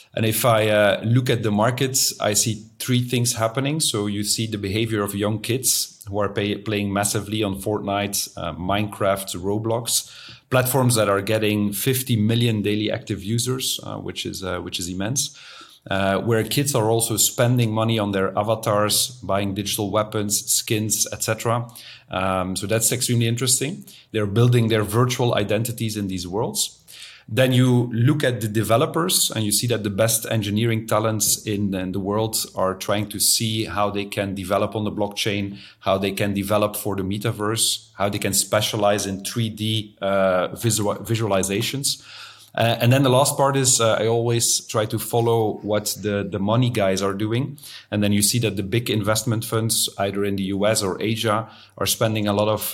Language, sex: English, male